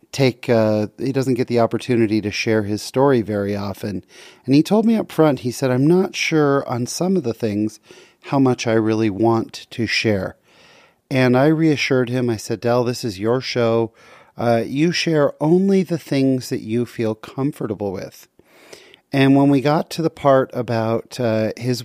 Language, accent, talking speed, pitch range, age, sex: English, American, 185 wpm, 110-135 Hz, 40-59, male